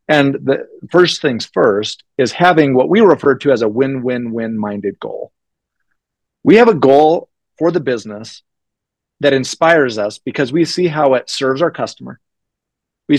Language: English